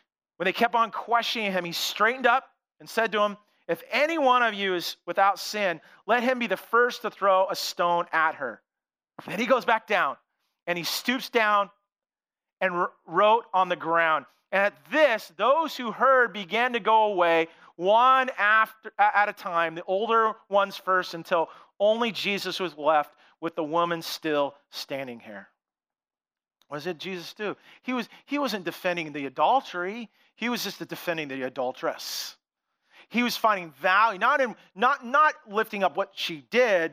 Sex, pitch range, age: male, 170-230 Hz, 40-59